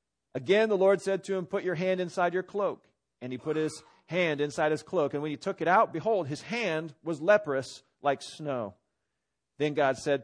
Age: 40-59